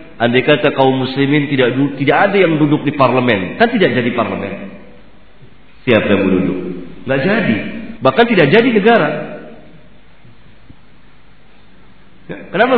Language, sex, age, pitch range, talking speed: Malay, male, 50-69, 130-180 Hz, 115 wpm